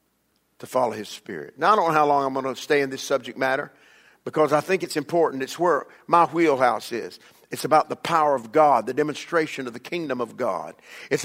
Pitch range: 160-225 Hz